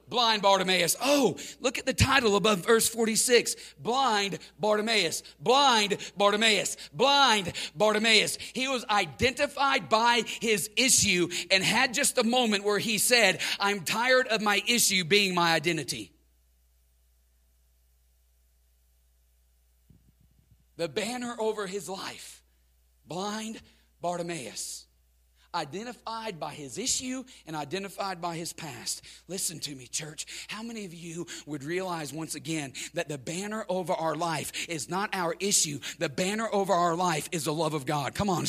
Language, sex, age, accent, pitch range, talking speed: English, male, 40-59, American, 140-215 Hz, 135 wpm